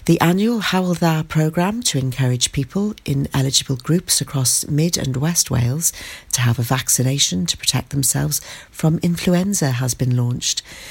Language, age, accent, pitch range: English, 40-59, British, 135-180 Hz